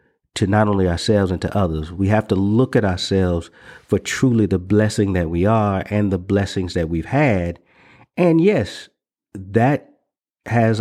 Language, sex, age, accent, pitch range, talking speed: English, male, 50-69, American, 95-110 Hz, 165 wpm